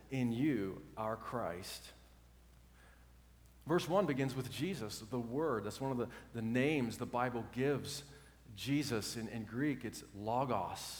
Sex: male